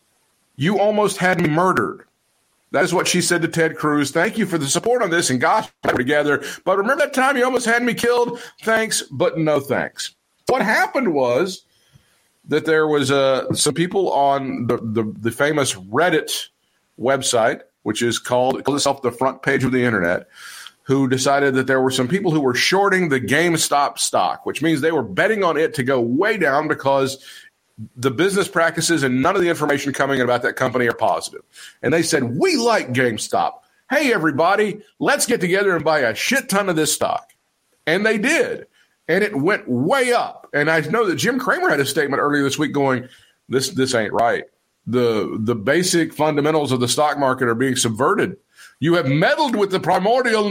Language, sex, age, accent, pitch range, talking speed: English, male, 50-69, American, 135-200 Hz, 195 wpm